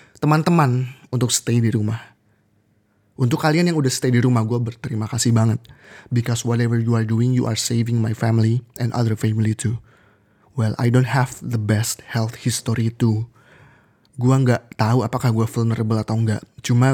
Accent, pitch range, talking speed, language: native, 115-130 Hz, 170 wpm, Indonesian